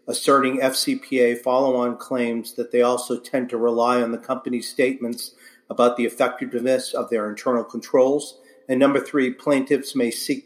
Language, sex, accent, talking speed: English, male, American, 155 wpm